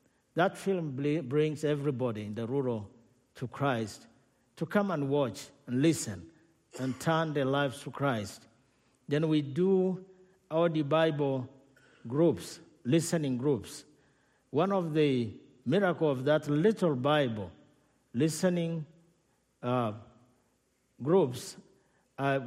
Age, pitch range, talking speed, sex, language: 50-69, 130-165 Hz, 110 wpm, male, English